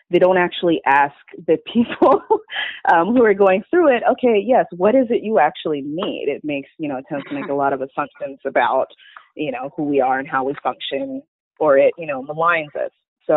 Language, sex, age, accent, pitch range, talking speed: English, female, 30-49, American, 140-175 Hz, 220 wpm